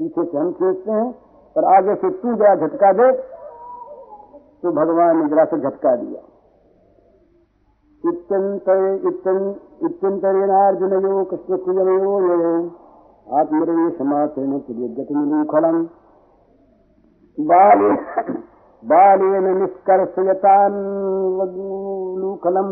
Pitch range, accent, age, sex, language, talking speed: 175-270 Hz, native, 60-79, male, Hindi, 50 wpm